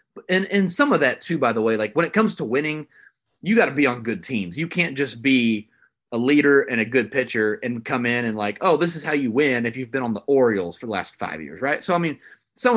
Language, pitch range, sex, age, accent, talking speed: English, 115-160 Hz, male, 30-49, American, 275 wpm